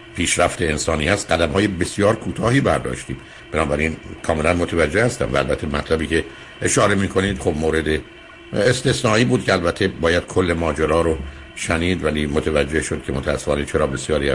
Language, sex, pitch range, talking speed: Persian, male, 75-95 Hz, 160 wpm